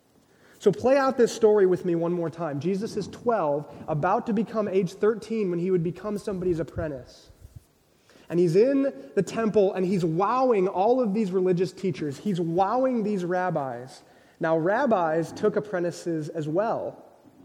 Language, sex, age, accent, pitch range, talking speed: English, male, 20-39, American, 175-220 Hz, 160 wpm